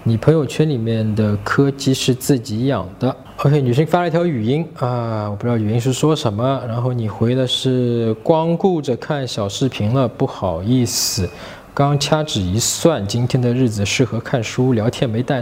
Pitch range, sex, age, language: 120-170 Hz, male, 20-39, Chinese